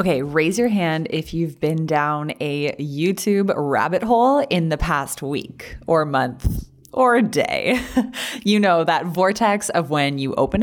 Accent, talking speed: American, 160 wpm